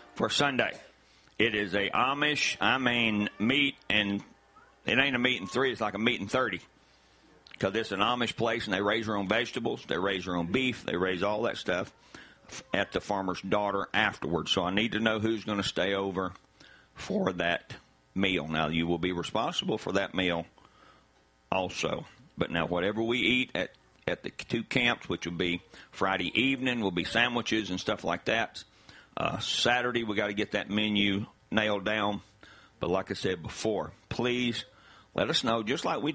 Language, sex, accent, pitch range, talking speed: English, male, American, 90-115 Hz, 190 wpm